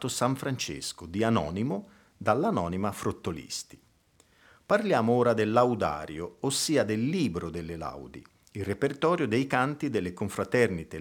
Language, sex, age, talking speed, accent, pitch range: Italian, male, 50-69, 115 wpm, native, 100-130 Hz